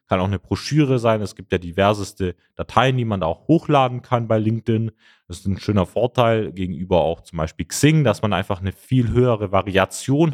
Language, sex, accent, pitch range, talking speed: German, male, German, 100-130 Hz, 205 wpm